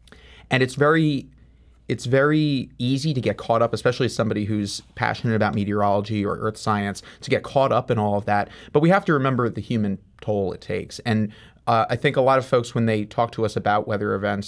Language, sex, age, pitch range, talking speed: English, male, 30-49, 105-125 Hz, 225 wpm